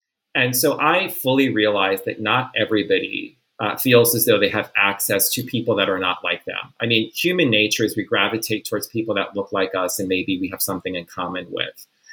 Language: English